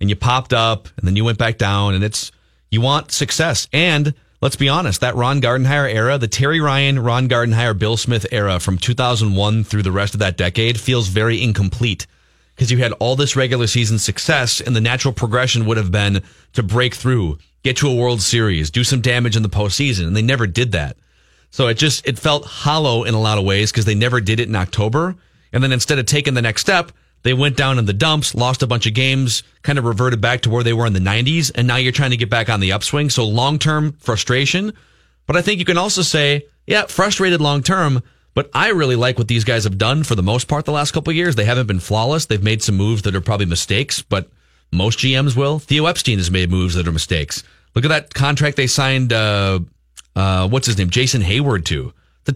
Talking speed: 235 wpm